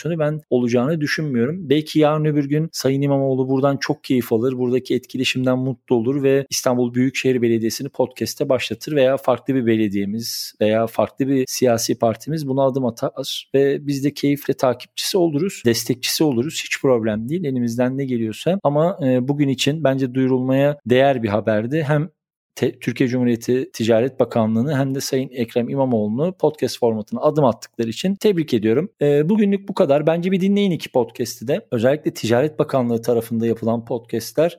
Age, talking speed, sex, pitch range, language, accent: 40-59, 155 wpm, male, 120-155 Hz, Turkish, native